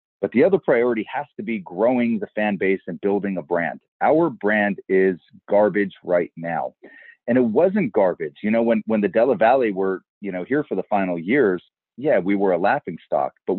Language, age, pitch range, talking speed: English, 30-49, 90-110 Hz, 210 wpm